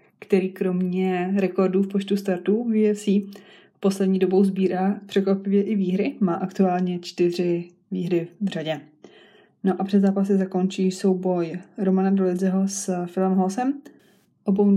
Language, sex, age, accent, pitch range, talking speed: Czech, female, 20-39, native, 180-200 Hz, 130 wpm